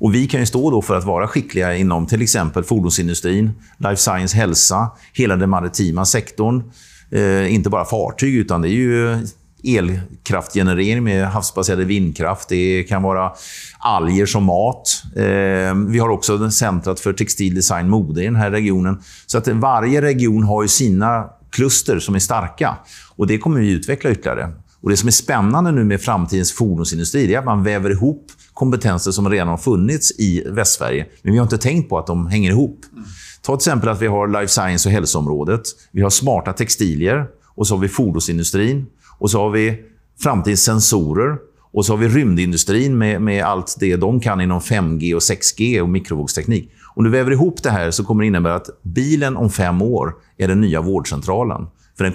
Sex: male